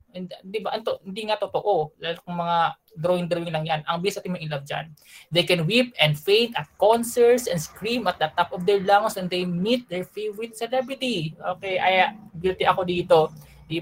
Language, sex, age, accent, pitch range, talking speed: Filipino, male, 20-39, native, 160-205 Hz, 200 wpm